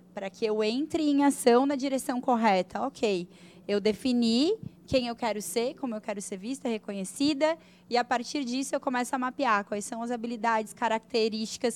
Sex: female